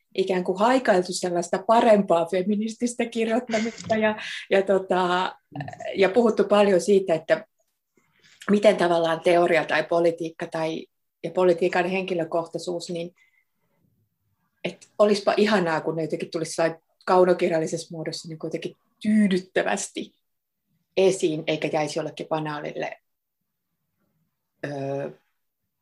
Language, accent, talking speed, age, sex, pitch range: Finnish, native, 100 wpm, 30-49, female, 165-210 Hz